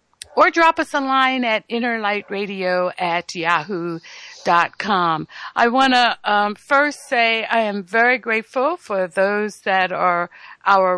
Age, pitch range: 60-79, 195-260 Hz